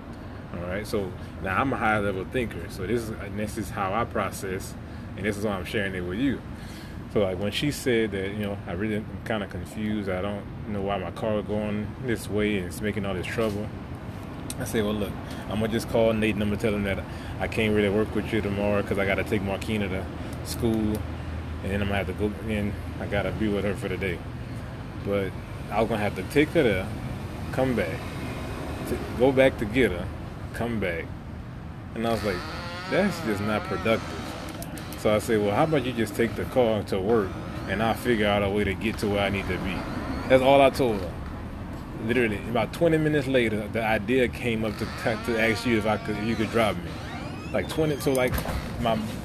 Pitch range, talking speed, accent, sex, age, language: 100-115 Hz, 235 wpm, American, male, 20-39, English